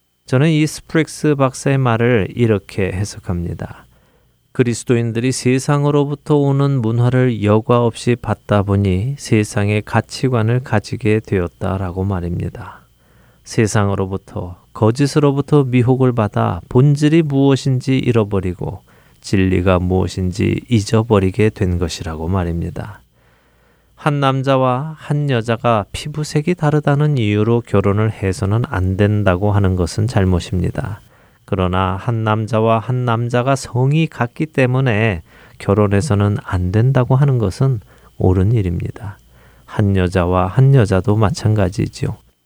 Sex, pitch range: male, 95-130 Hz